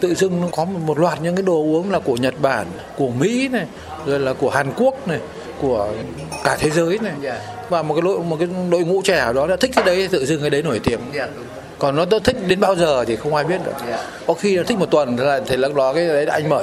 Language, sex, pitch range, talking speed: Vietnamese, male, 135-170 Hz, 265 wpm